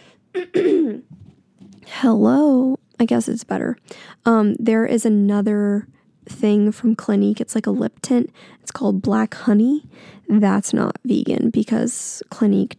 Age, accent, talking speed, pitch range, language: 10-29, American, 120 wpm, 215-260 Hz, English